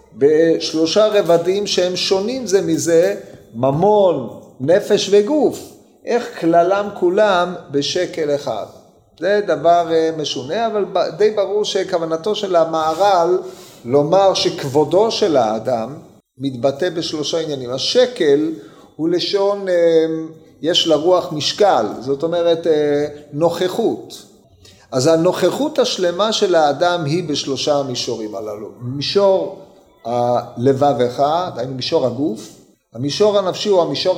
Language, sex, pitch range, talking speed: Hebrew, male, 160-205 Hz, 100 wpm